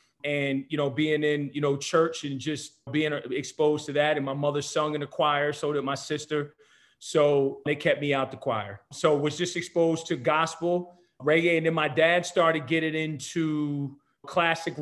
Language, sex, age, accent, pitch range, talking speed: English, male, 30-49, American, 145-160 Hz, 190 wpm